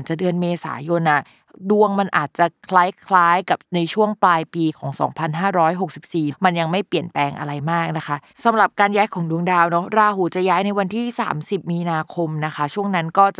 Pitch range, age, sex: 155-190 Hz, 20-39, female